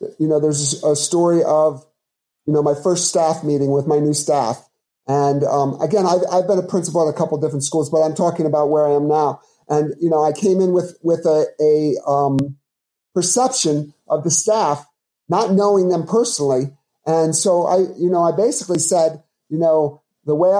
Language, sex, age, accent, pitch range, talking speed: English, male, 50-69, American, 145-165 Hz, 200 wpm